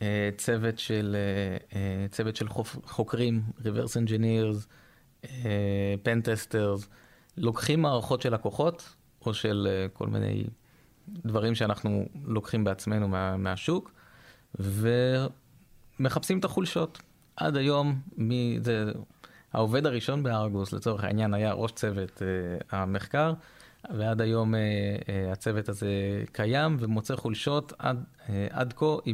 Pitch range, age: 105-130 Hz, 20-39